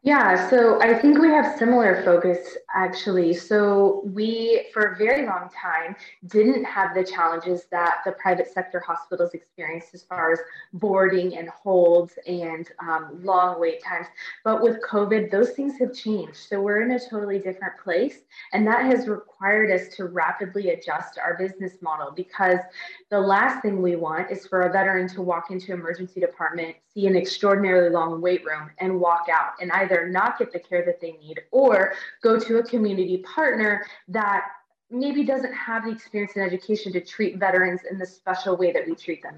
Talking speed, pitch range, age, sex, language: 185 wpm, 180-220 Hz, 20-39, female, English